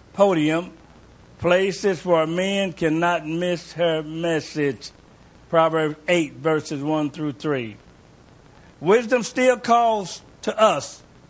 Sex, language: male, English